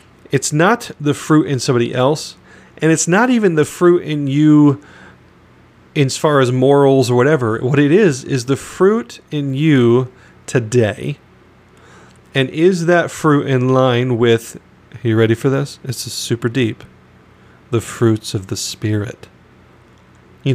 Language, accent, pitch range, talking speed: English, American, 120-150 Hz, 150 wpm